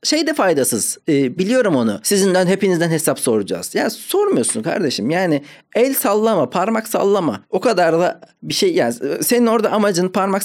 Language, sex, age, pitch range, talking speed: Turkish, male, 40-59, 125-195 Hz, 155 wpm